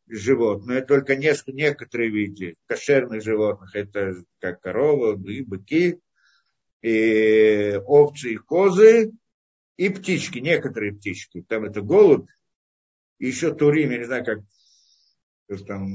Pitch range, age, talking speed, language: 110-155 Hz, 50-69, 120 wpm, Russian